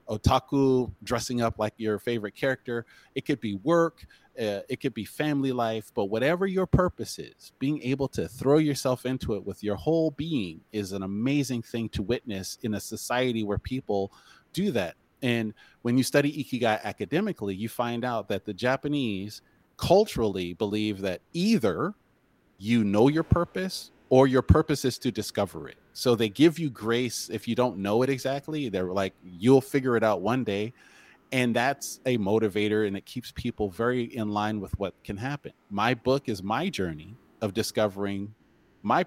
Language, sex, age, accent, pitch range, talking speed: English, male, 30-49, American, 105-135 Hz, 175 wpm